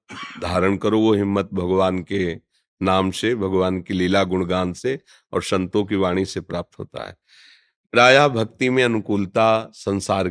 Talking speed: 150 wpm